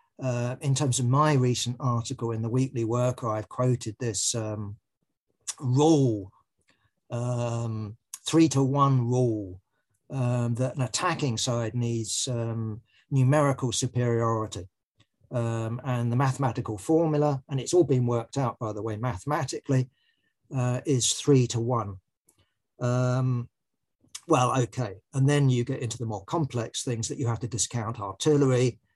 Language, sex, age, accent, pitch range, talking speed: English, male, 50-69, British, 115-135 Hz, 140 wpm